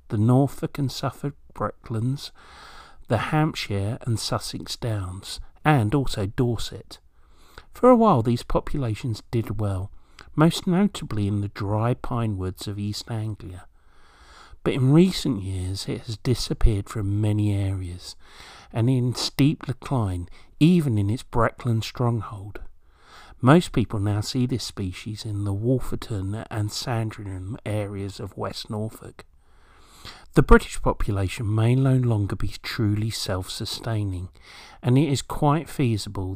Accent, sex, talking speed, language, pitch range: British, male, 130 wpm, English, 95-125 Hz